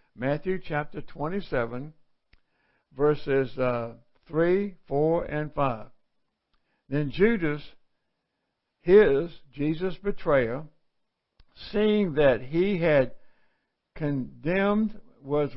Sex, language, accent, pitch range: male, English, American, 135-175 Hz